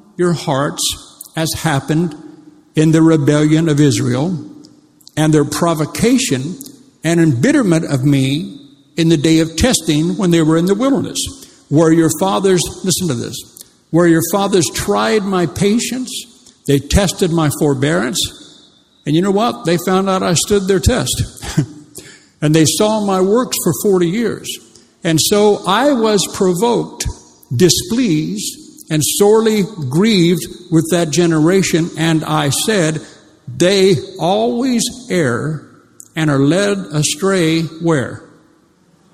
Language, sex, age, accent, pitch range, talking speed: English, male, 60-79, American, 150-190 Hz, 130 wpm